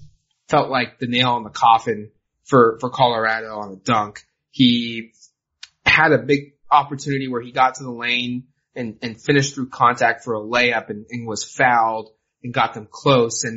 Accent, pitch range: American, 115-140 Hz